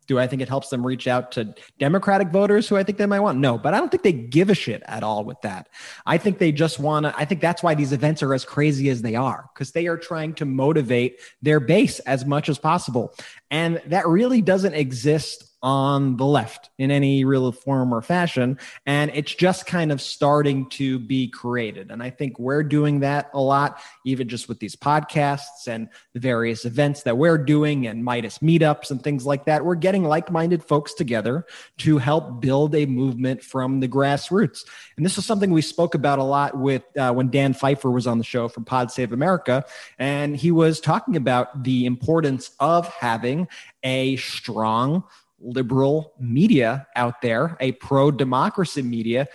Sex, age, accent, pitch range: male, 20-39, American, 130-165 Hz